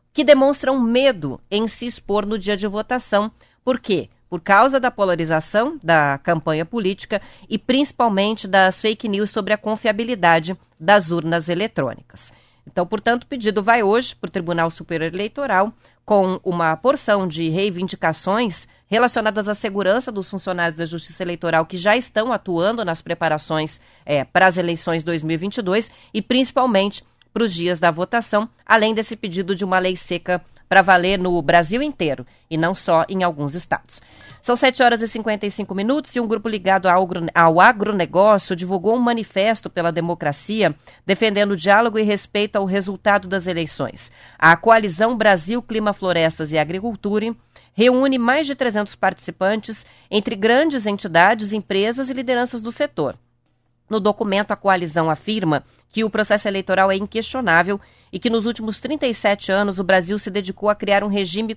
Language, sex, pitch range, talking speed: Portuguese, female, 175-225 Hz, 155 wpm